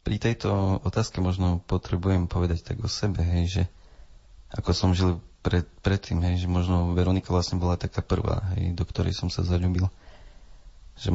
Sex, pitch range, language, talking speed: male, 85-95 Hz, Slovak, 165 wpm